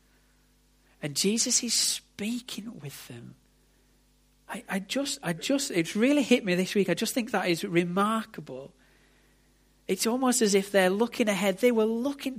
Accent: British